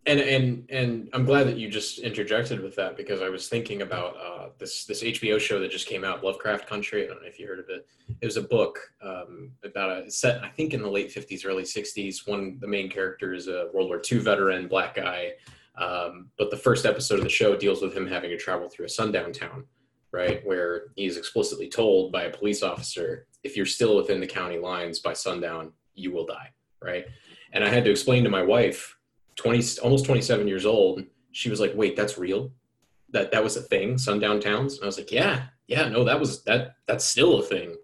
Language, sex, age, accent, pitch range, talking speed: English, male, 20-39, American, 105-155 Hz, 225 wpm